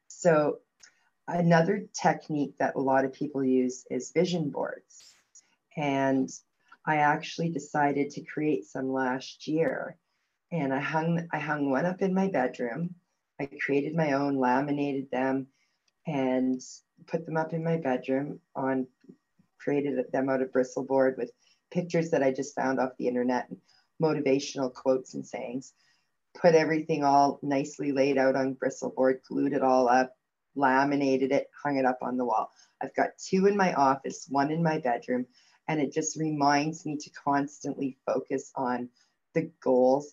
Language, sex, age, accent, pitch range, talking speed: English, female, 40-59, American, 130-160 Hz, 155 wpm